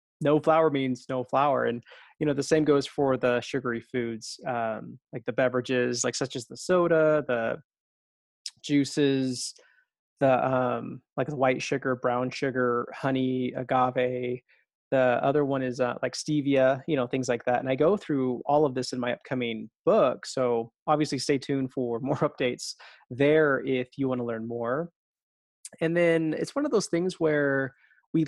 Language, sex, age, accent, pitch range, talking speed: English, male, 20-39, American, 125-155 Hz, 175 wpm